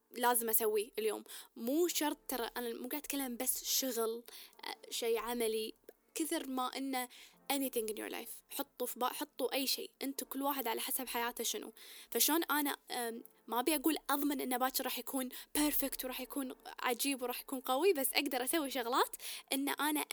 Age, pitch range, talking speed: 10-29, 245-335 Hz, 175 wpm